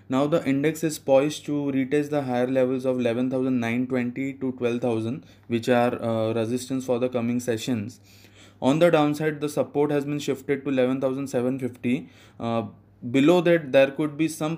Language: English